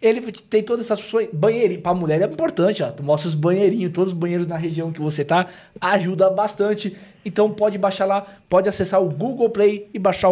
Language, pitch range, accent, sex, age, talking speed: Portuguese, 170-205 Hz, Brazilian, male, 20-39, 210 wpm